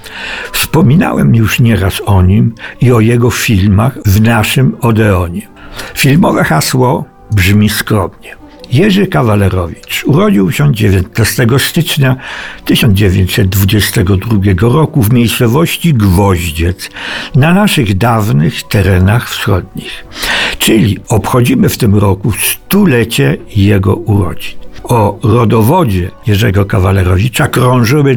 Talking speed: 95 wpm